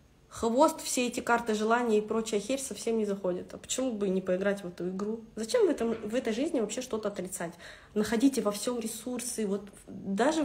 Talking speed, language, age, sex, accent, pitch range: 195 wpm, Russian, 20-39, female, native, 205-255 Hz